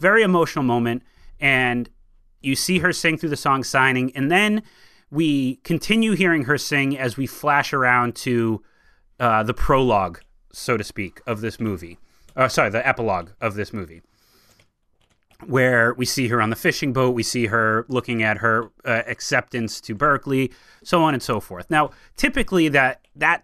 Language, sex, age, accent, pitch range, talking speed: English, male, 30-49, American, 115-155 Hz, 170 wpm